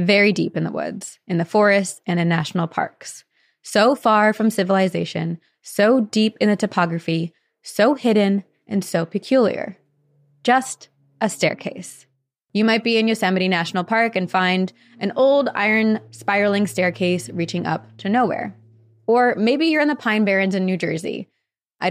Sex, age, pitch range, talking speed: female, 20-39, 175-225 Hz, 160 wpm